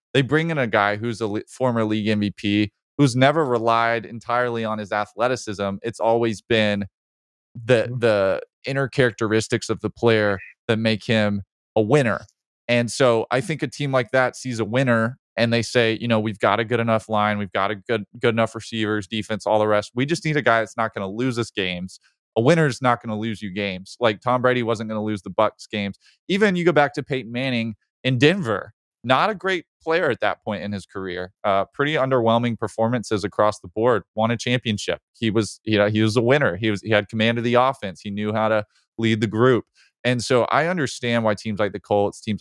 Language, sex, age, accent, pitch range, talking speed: English, male, 20-39, American, 105-125 Hz, 225 wpm